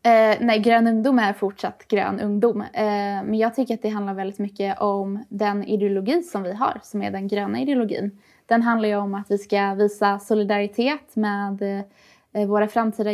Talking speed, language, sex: 175 wpm, Swedish, female